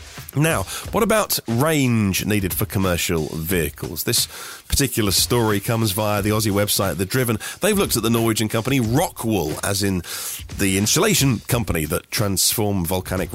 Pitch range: 100-135 Hz